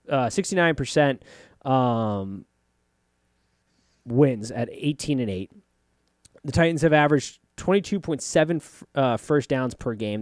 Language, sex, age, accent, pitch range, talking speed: English, male, 20-39, American, 115-165 Hz, 105 wpm